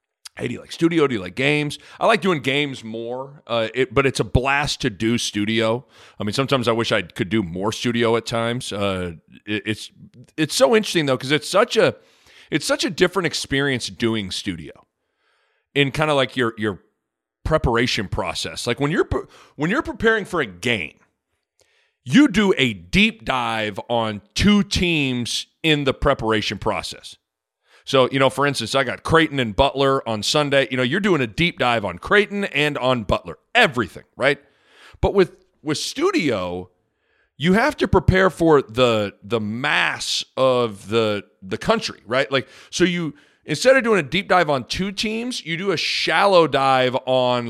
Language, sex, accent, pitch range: English, male, American, 115-170 Hz